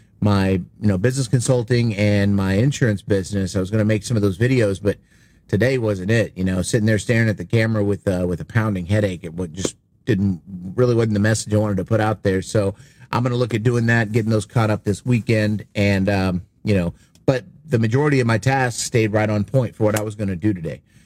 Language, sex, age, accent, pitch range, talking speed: English, male, 30-49, American, 105-130 Hz, 240 wpm